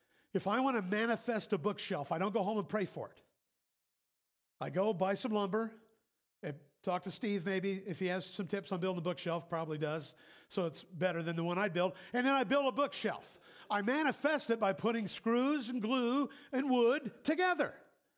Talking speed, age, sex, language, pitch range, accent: 200 wpm, 50-69, male, English, 185-240 Hz, American